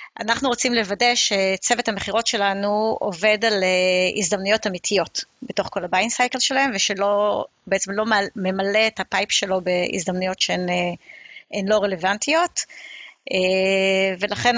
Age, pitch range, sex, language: 30-49, 185-220 Hz, female, Hebrew